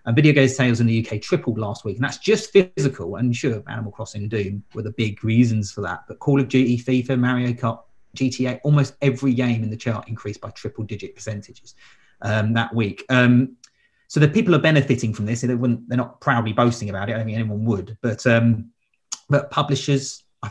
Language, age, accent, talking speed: English, 30-49, British, 205 wpm